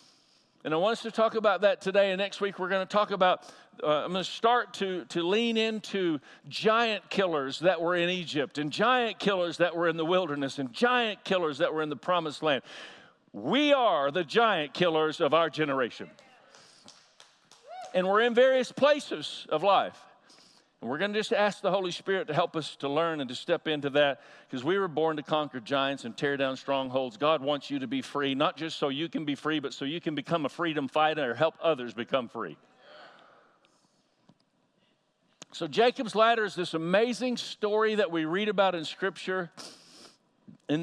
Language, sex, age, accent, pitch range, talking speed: English, male, 50-69, American, 150-205 Hz, 195 wpm